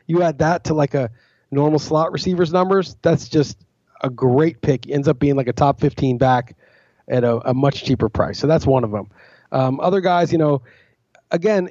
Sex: male